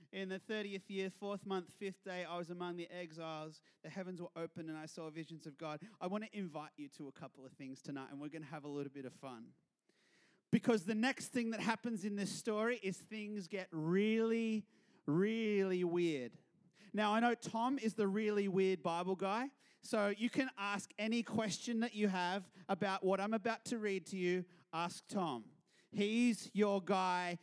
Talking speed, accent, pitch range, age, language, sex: 200 wpm, Australian, 180-245 Hz, 30-49, English, male